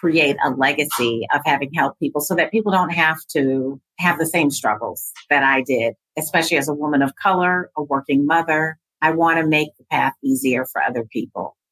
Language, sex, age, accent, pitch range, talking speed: English, female, 50-69, American, 135-160 Hz, 200 wpm